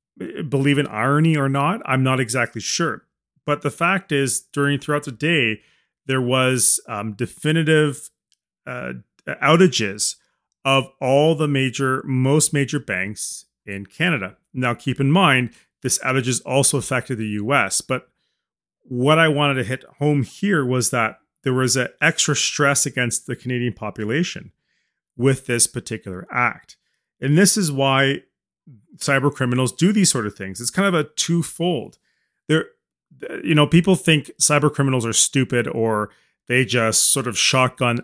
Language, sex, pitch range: English, male, 115-145 Hz